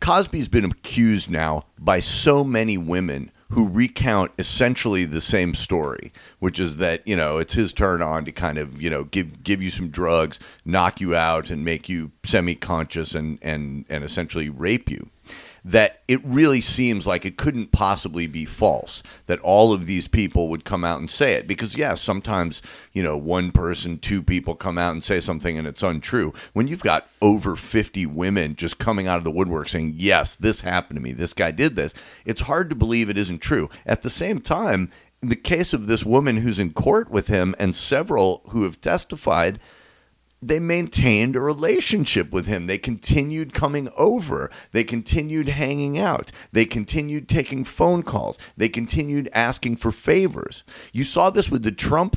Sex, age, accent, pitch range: male, 40-59, American, 85-120 Hz